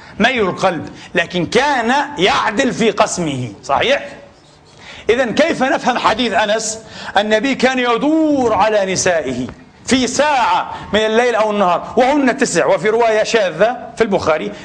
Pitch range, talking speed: 185-230 Hz, 125 wpm